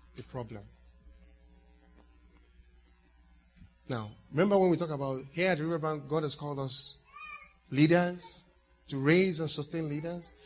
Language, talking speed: English, 125 wpm